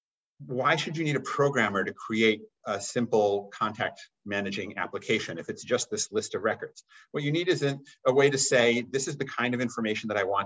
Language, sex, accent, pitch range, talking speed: English, male, American, 110-155 Hz, 210 wpm